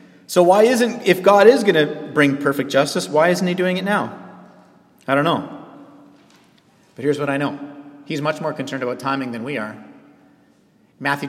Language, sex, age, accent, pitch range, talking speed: English, male, 30-49, American, 140-185 Hz, 185 wpm